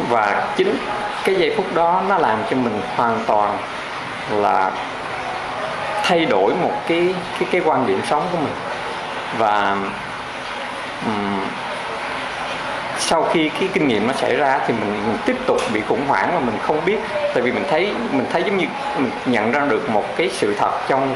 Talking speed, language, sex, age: 180 wpm, Vietnamese, male, 20-39